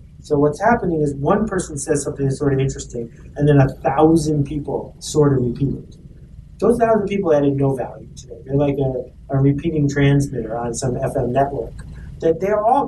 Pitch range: 135-160 Hz